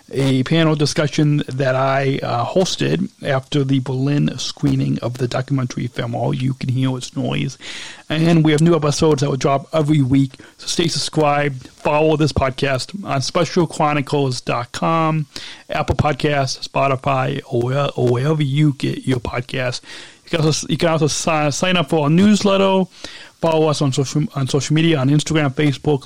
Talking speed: 160 wpm